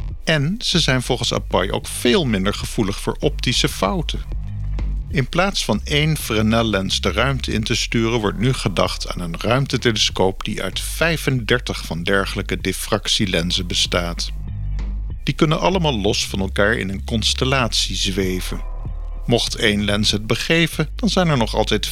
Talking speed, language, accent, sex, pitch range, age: 150 wpm, Dutch, Dutch, male, 95-120 Hz, 50-69